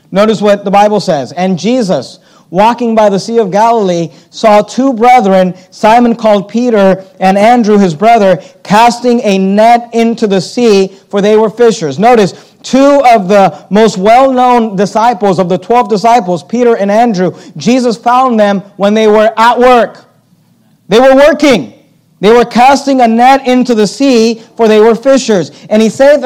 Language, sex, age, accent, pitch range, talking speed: English, male, 40-59, American, 205-250 Hz, 165 wpm